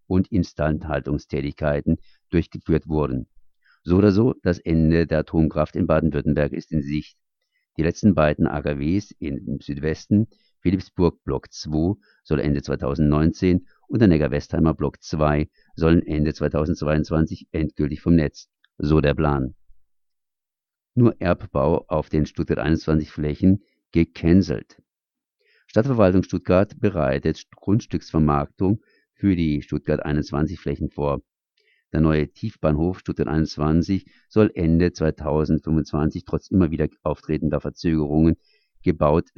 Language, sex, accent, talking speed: German, male, German, 115 wpm